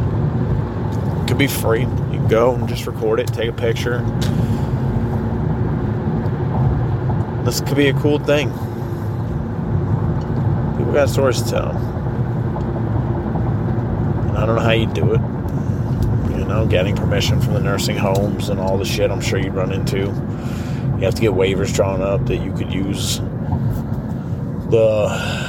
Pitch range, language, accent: 115-125 Hz, English, American